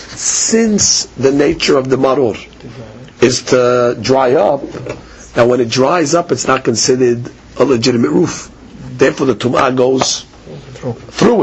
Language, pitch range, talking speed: English, 130-205 Hz, 135 wpm